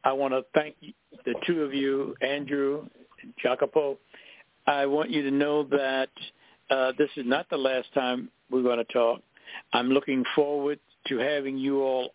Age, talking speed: 60-79, 175 wpm